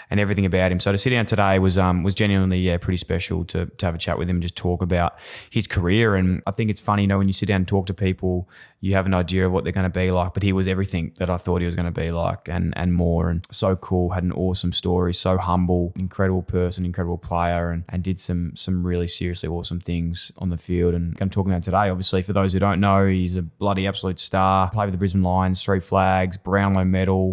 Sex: male